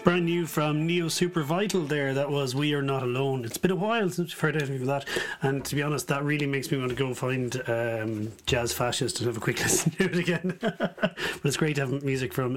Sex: male